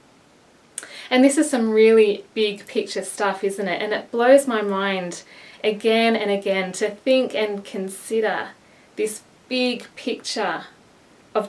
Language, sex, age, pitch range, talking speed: English, female, 20-39, 185-225 Hz, 135 wpm